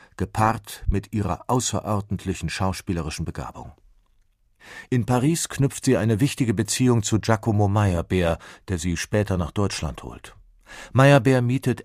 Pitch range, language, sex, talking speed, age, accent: 95-115 Hz, German, male, 120 wpm, 50-69, German